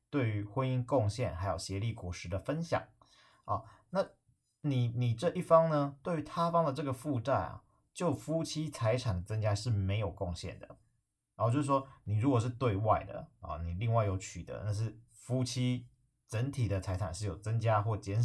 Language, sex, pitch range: Chinese, male, 100-130 Hz